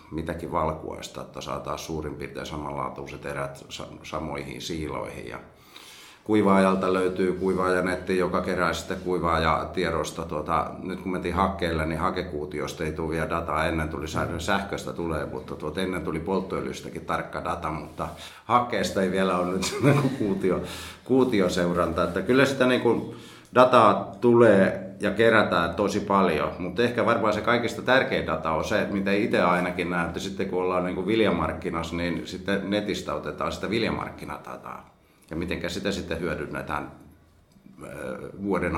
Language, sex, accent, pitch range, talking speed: Finnish, male, native, 80-95 Hz, 140 wpm